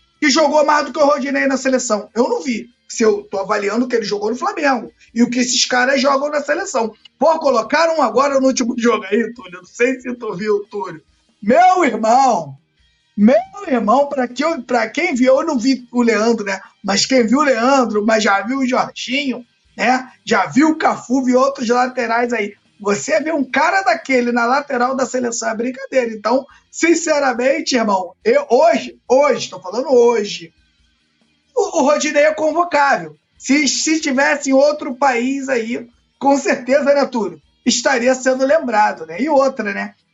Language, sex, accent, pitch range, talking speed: Portuguese, male, Brazilian, 210-275 Hz, 180 wpm